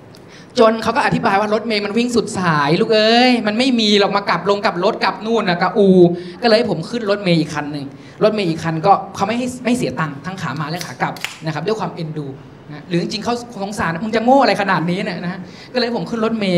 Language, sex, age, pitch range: Thai, male, 20-39, 185-265 Hz